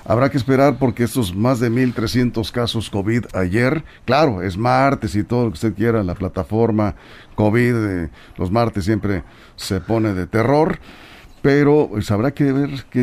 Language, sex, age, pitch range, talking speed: Spanish, male, 50-69, 110-150 Hz, 165 wpm